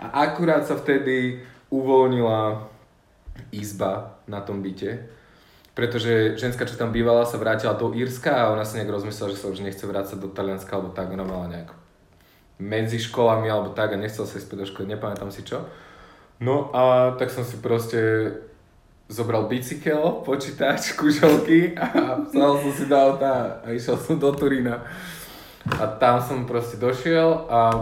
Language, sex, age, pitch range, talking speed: Slovak, male, 20-39, 110-130 Hz, 160 wpm